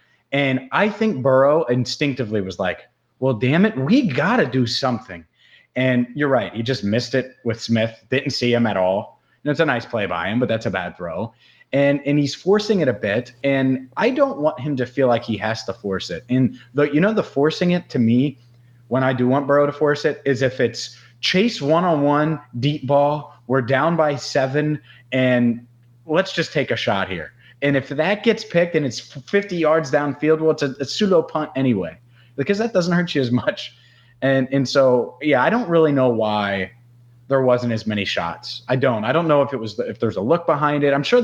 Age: 30-49